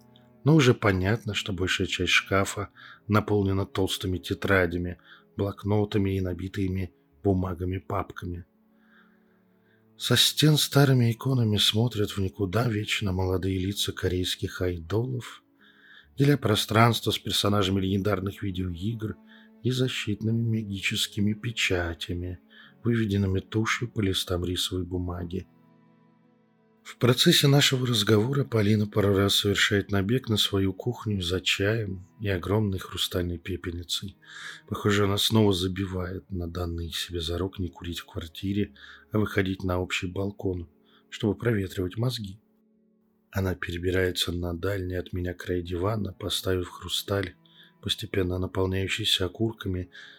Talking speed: 110 wpm